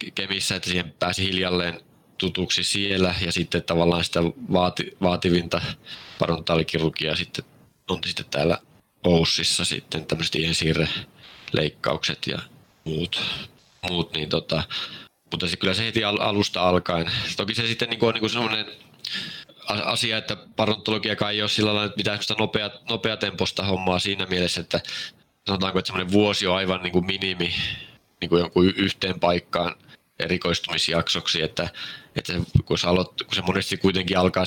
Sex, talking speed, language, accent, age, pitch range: male, 145 wpm, Finnish, native, 20-39, 85-95 Hz